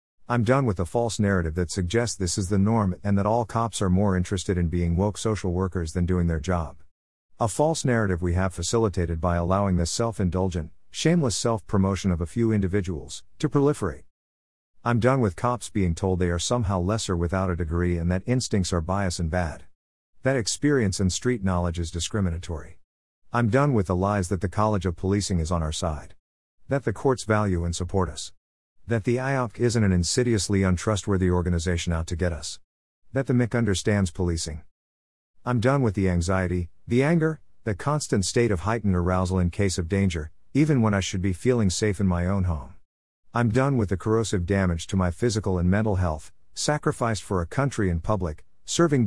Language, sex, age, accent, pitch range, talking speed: English, male, 50-69, American, 85-115 Hz, 195 wpm